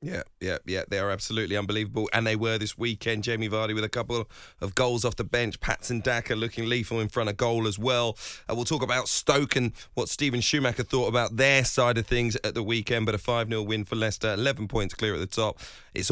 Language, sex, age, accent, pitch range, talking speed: English, male, 30-49, British, 115-140 Hz, 235 wpm